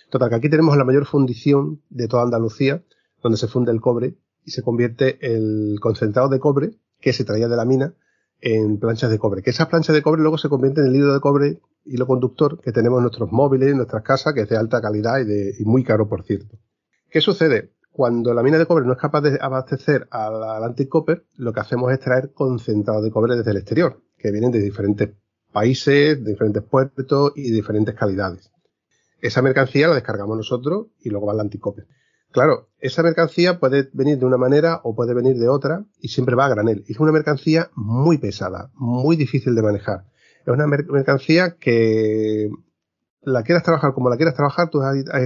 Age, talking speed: 30-49, 205 wpm